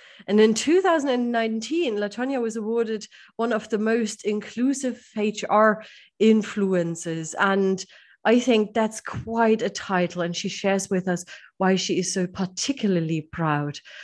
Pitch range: 185-260 Hz